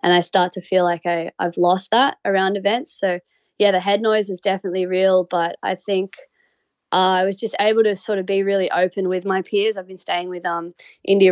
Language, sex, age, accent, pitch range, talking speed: English, female, 20-39, Australian, 175-195 Hz, 230 wpm